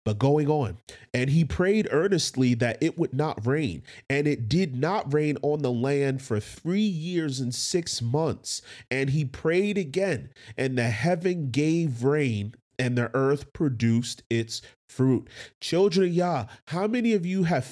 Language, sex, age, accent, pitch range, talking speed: English, male, 30-49, American, 120-150 Hz, 165 wpm